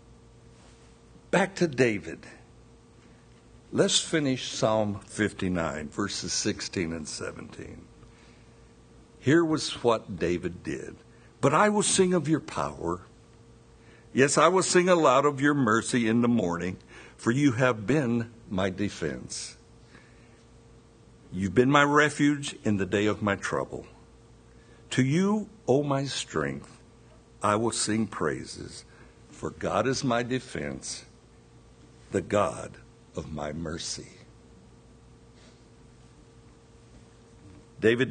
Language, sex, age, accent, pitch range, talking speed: English, male, 60-79, American, 110-130 Hz, 110 wpm